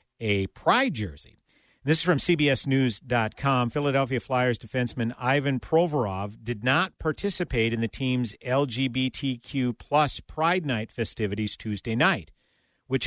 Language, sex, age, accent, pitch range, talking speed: English, male, 50-69, American, 115-170 Hz, 120 wpm